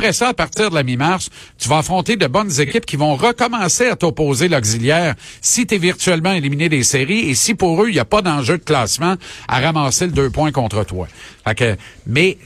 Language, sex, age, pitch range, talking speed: French, male, 50-69, 125-170 Hz, 220 wpm